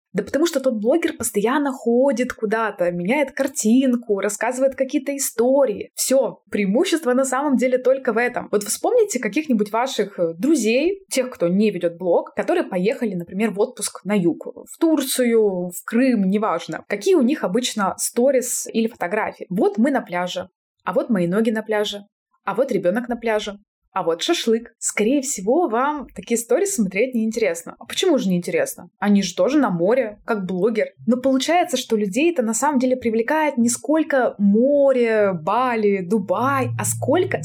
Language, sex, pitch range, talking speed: Russian, female, 200-260 Hz, 160 wpm